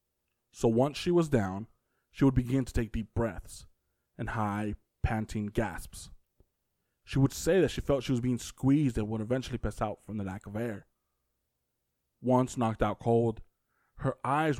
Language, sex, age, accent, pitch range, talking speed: English, male, 20-39, American, 110-130 Hz, 175 wpm